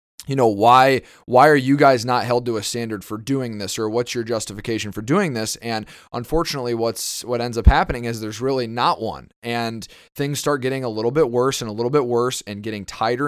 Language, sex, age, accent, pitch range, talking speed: English, male, 20-39, American, 115-135 Hz, 225 wpm